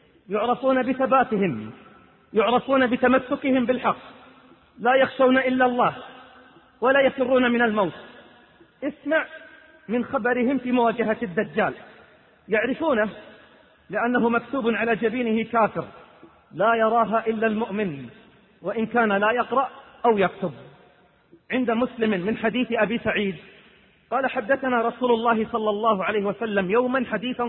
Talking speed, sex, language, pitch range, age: 110 wpm, male, Arabic, 210-250 Hz, 40-59